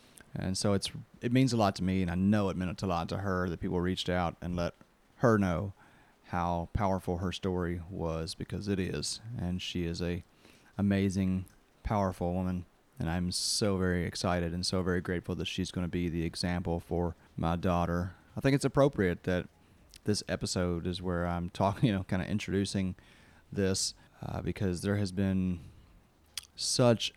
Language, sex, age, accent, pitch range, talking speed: English, male, 30-49, American, 90-100 Hz, 185 wpm